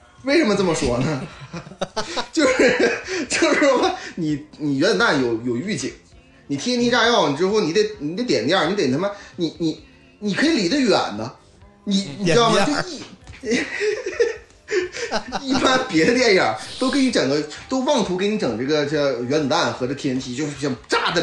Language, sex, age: Chinese, male, 20-39